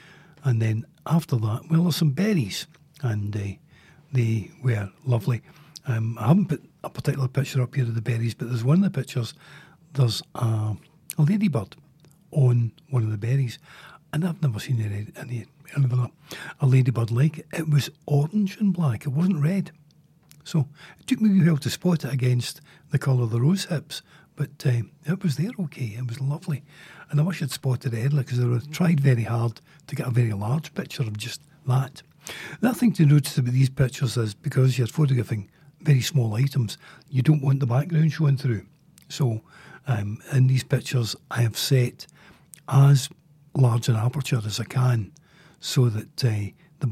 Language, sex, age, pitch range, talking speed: English, male, 60-79, 125-155 Hz, 180 wpm